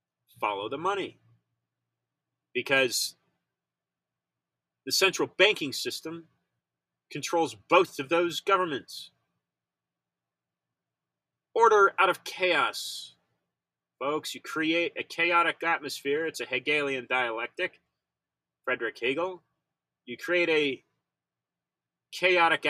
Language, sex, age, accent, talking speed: English, male, 30-49, American, 85 wpm